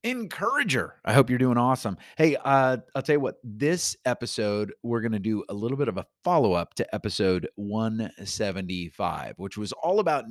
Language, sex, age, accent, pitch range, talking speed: English, male, 30-49, American, 95-135 Hz, 180 wpm